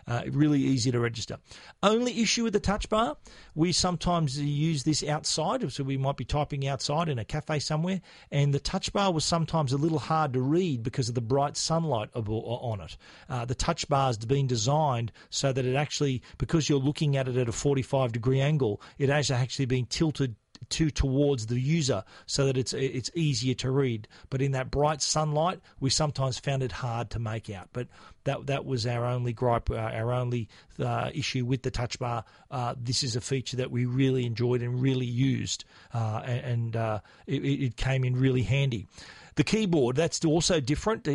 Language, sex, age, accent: English, male, 40-59, Australian